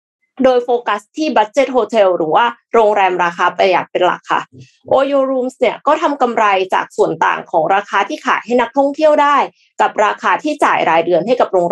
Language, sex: Thai, female